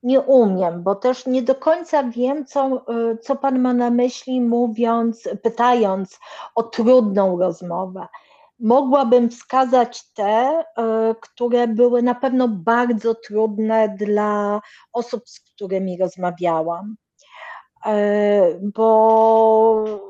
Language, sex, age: Polish, female, 40-59